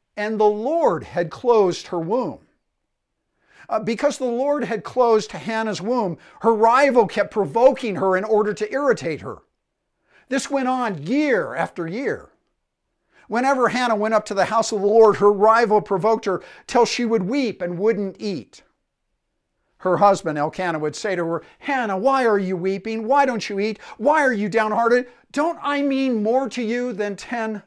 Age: 50-69